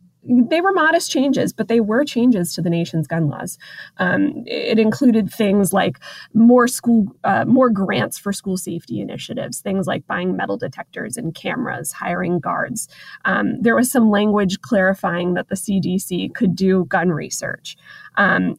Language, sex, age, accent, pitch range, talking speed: English, female, 20-39, American, 175-220 Hz, 160 wpm